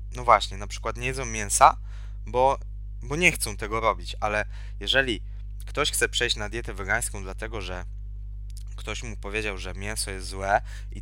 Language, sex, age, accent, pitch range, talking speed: Polish, male, 20-39, native, 100-110 Hz, 170 wpm